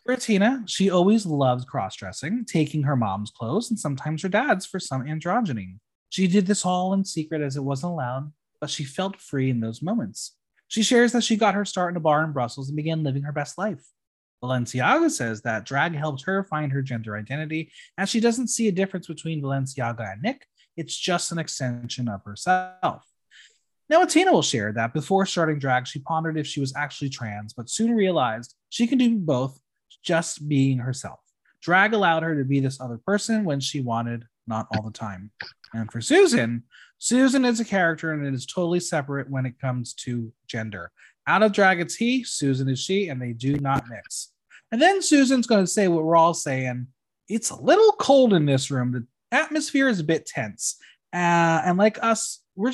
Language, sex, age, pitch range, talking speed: English, male, 20-39, 130-195 Hz, 200 wpm